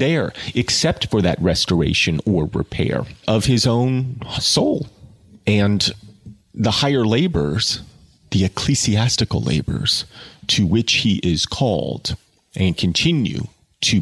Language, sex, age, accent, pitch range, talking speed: English, male, 30-49, American, 90-115 Hz, 110 wpm